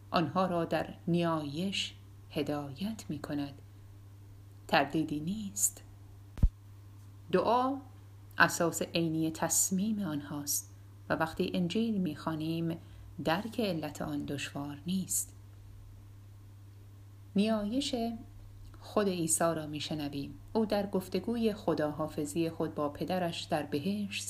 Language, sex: Persian, female